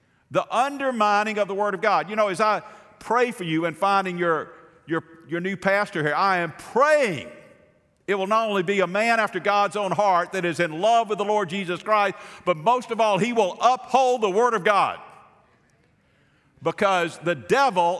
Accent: American